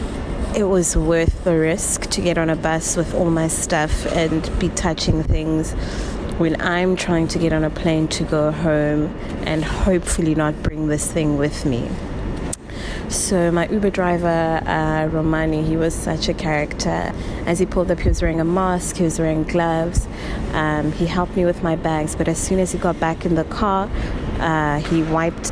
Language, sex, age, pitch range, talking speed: English, female, 20-39, 155-175 Hz, 190 wpm